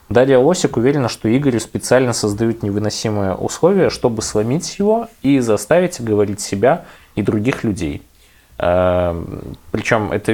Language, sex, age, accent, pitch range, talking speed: Russian, male, 20-39, native, 100-125 Hz, 120 wpm